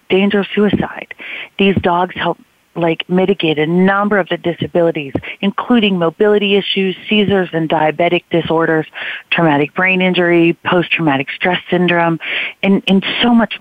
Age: 40-59